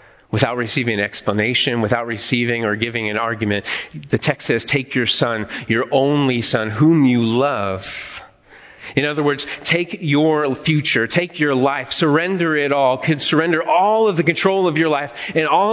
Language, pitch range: English, 135-190 Hz